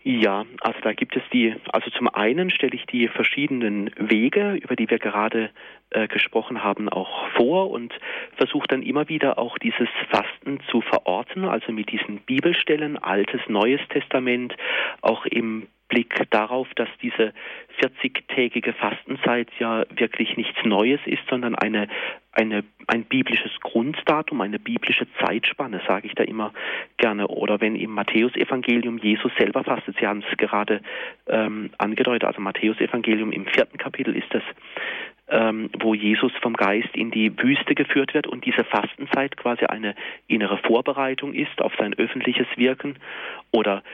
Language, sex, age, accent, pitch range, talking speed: German, male, 40-59, German, 110-135 Hz, 150 wpm